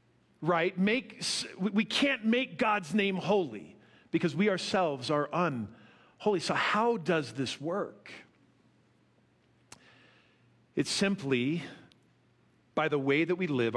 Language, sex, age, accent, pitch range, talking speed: English, male, 50-69, American, 145-235 Hz, 115 wpm